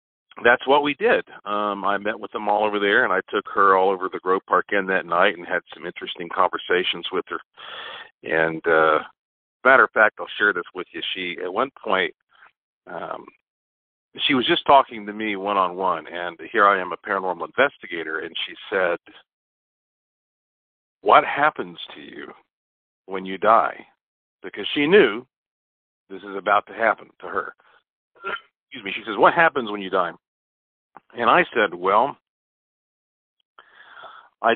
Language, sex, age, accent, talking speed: English, male, 50-69, American, 160 wpm